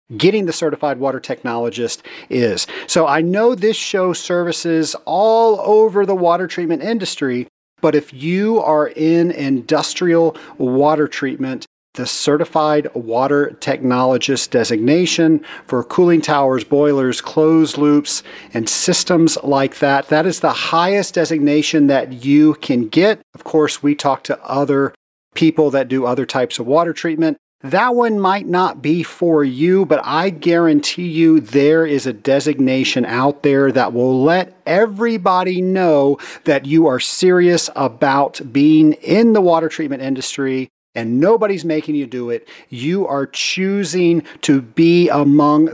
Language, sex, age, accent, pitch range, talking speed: English, male, 40-59, American, 135-175 Hz, 145 wpm